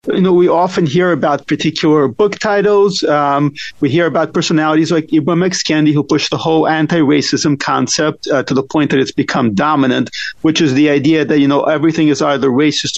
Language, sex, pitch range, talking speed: English, male, 150-175 Hz, 200 wpm